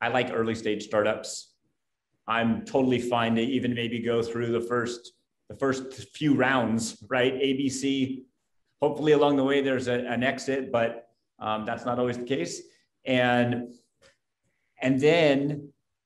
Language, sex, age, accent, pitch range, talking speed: English, male, 30-49, American, 105-130 Hz, 145 wpm